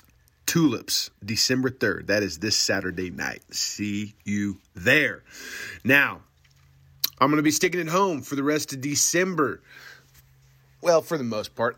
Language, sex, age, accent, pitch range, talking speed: English, male, 30-49, American, 105-155 Hz, 150 wpm